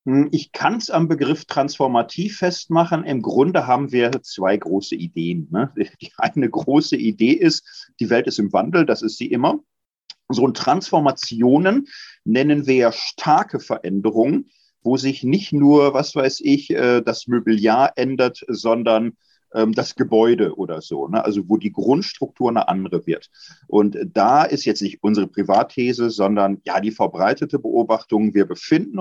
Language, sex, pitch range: German, male, 115-170 Hz